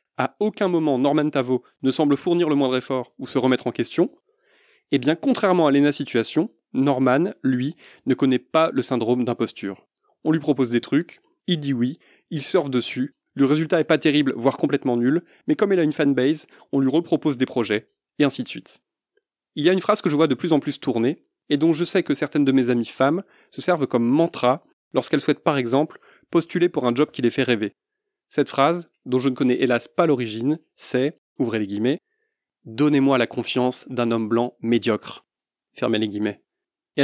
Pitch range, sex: 125-160 Hz, male